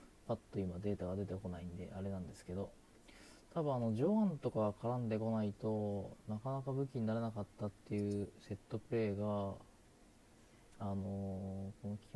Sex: male